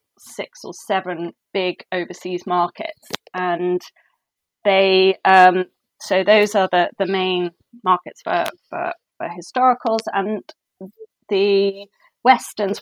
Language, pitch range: English, 185-235 Hz